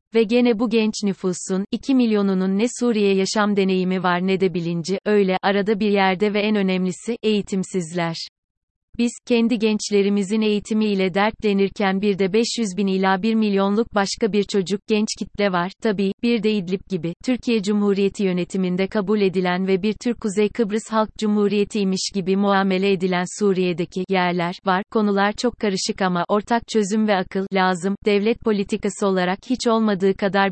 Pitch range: 190-220 Hz